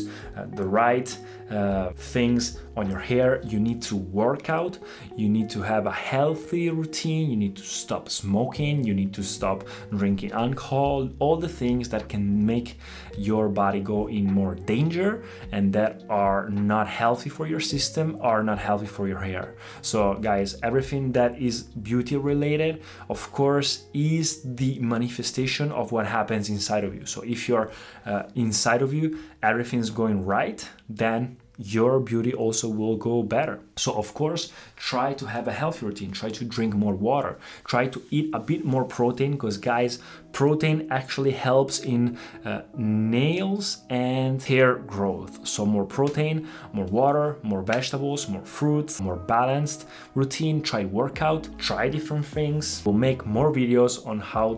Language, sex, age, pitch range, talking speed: Italian, male, 30-49, 105-135 Hz, 160 wpm